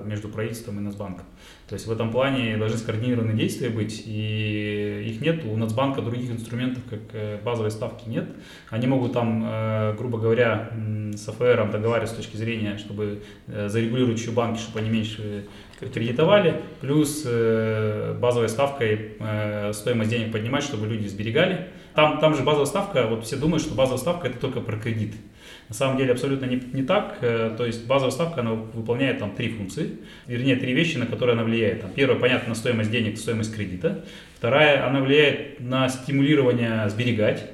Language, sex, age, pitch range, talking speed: Russian, male, 20-39, 110-130 Hz, 165 wpm